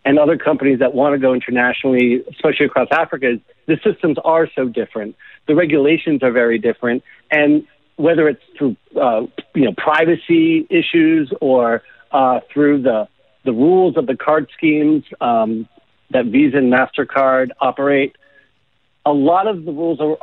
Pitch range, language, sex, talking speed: 135-170 Hz, English, male, 150 wpm